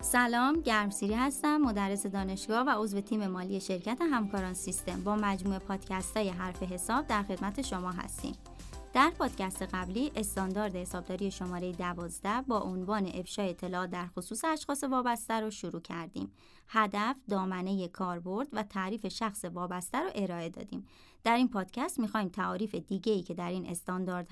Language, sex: Persian, male